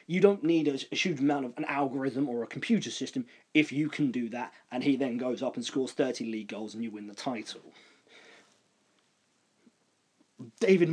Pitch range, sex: 130-160 Hz, male